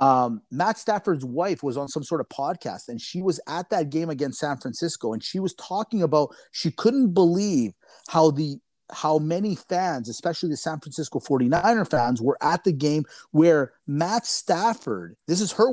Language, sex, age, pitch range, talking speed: English, male, 30-49, 140-200 Hz, 185 wpm